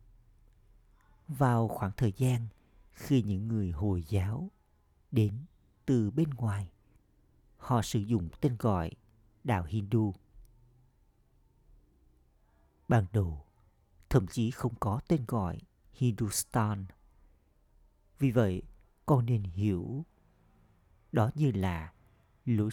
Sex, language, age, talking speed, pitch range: male, Vietnamese, 50-69, 100 wpm, 95-120 Hz